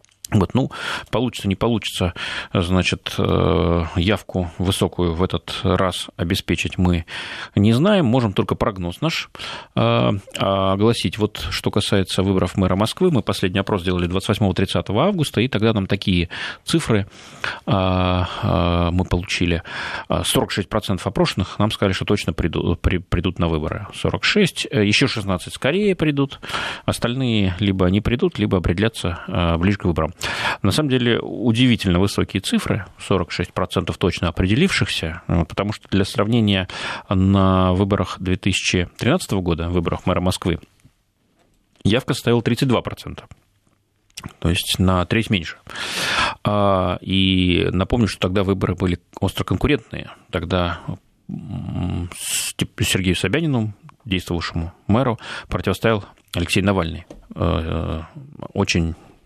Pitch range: 90-110 Hz